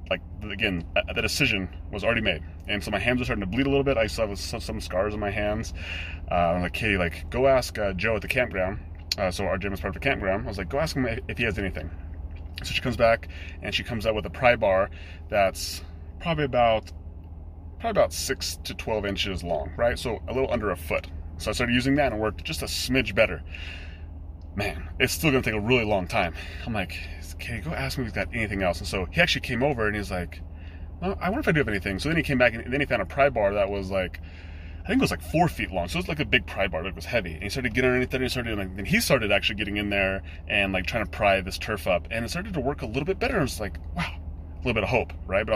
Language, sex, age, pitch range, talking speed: English, male, 30-49, 80-110 Hz, 285 wpm